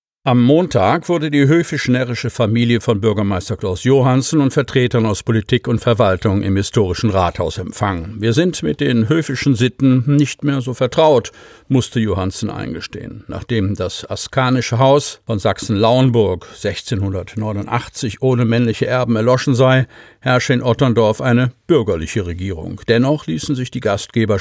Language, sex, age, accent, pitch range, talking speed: German, male, 50-69, German, 105-135 Hz, 140 wpm